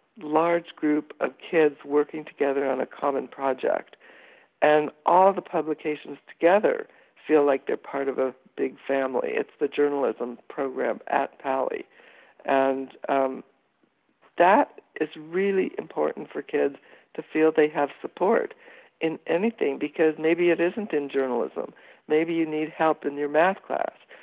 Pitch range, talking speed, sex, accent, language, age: 145-170 Hz, 145 wpm, female, American, English, 60-79